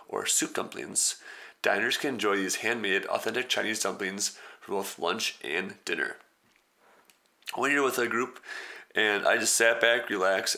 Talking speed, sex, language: 160 wpm, male, English